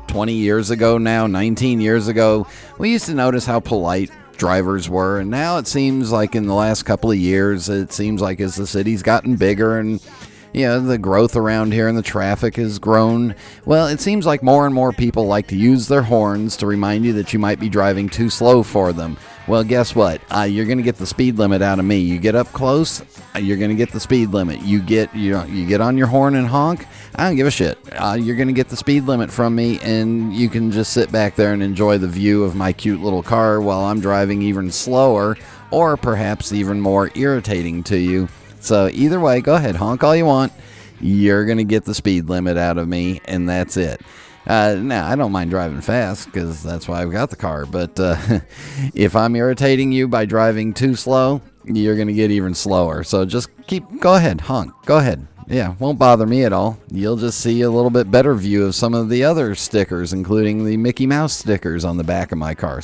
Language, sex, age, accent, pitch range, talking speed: English, male, 40-59, American, 100-120 Hz, 230 wpm